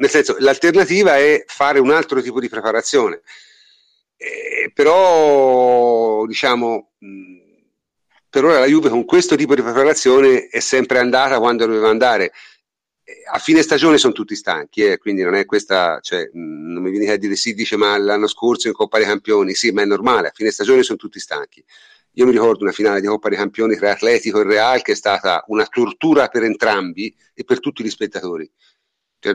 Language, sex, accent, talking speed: Italian, male, native, 190 wpm